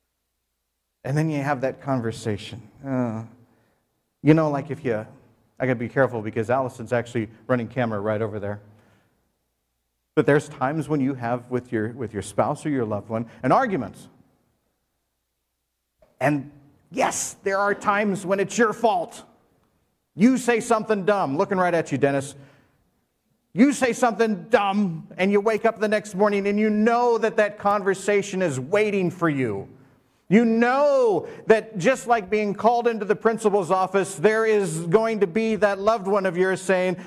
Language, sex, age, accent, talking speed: English, male, 40-59, American, 165 wpm